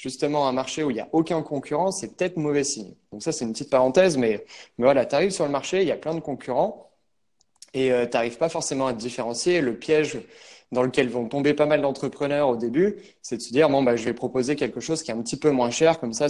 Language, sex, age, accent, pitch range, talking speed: French, male, 20-39, French, 120-155 Hz, 270 wpm